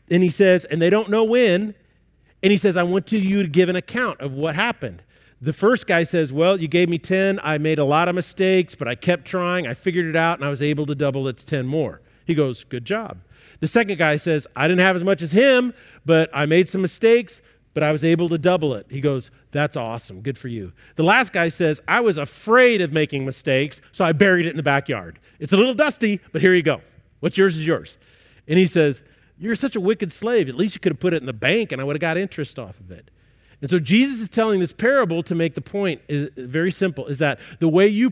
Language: English